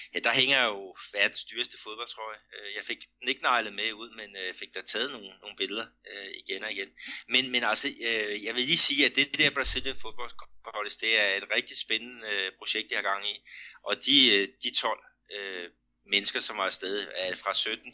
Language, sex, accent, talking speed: Danish, male, native, 190 wpm